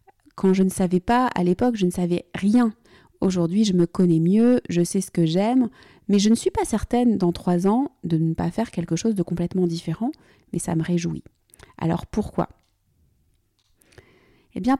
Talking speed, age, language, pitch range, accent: 190 wpm, 30-49, French, 175-215 Hz, French